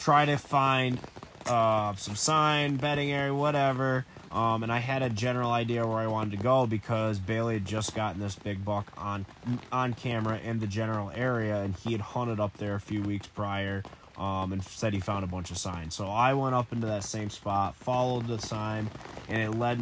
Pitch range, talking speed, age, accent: 100-120 Hz, 210 wpm, 20-39, American